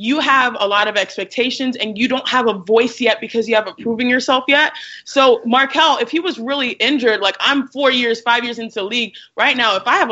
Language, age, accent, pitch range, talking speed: English, 20-39, American, 210-255 Hz, 230 wpm